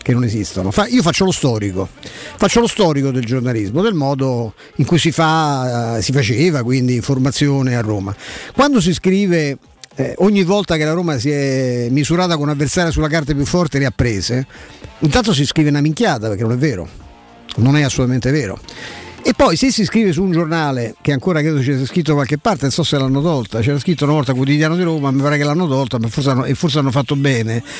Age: 50-69